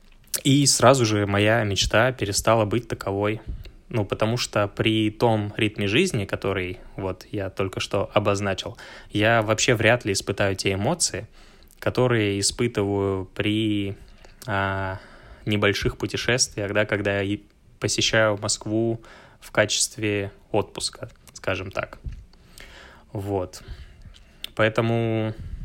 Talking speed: 105 wpm